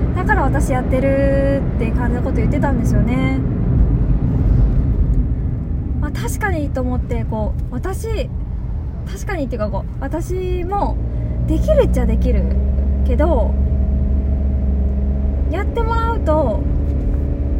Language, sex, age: Japanese, female, 20-39